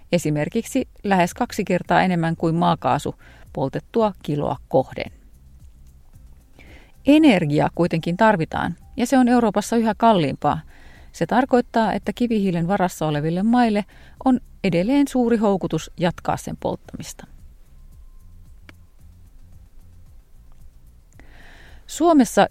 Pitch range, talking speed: 155-230 Hz, 90 wpm